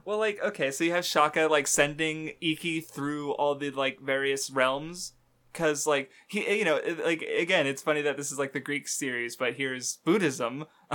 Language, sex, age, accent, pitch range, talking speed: English, male, 20-39, American, 130-160 Hz, 190 wpm